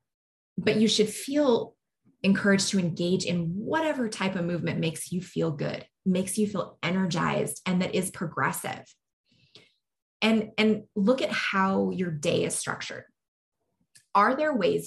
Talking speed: 145 wpm